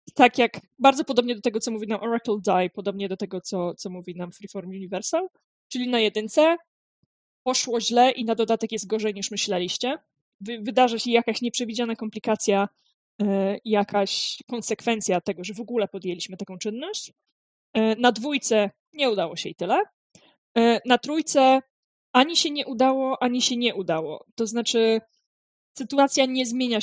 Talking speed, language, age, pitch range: 150 wpm, Polish, 20-39, 205-250 Hz